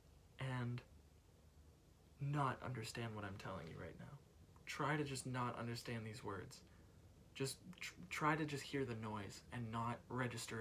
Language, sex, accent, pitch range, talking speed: English, male, American, 90-140 Hz, 145 wpm